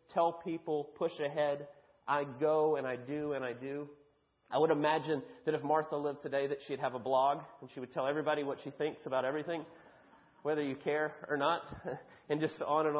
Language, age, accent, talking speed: English, 30-49, American, 205 wpm